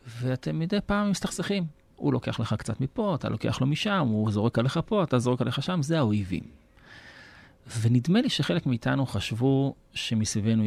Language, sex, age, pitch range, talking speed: Hebrew, male, 30-49, 105-130 Hz, 165 wpm